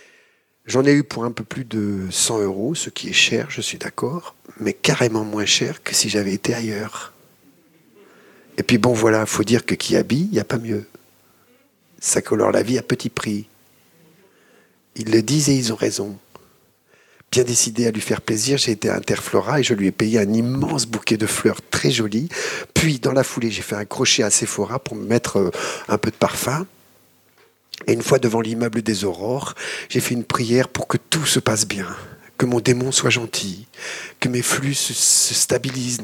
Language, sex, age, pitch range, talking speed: French, male, 50-69, 110-135 Hz, 200 wpm